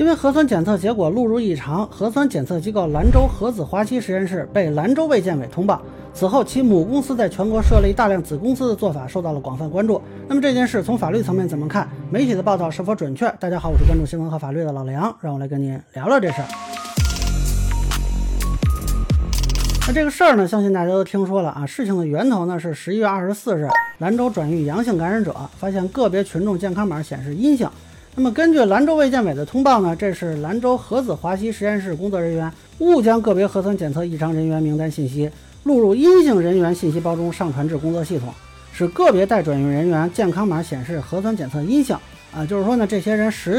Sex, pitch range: male, 160-225 Hz